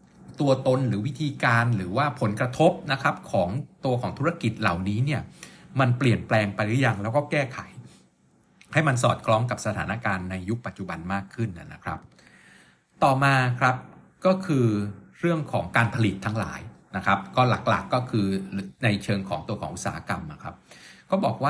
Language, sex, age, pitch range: Thai, male, 60-79, 100-135 Hz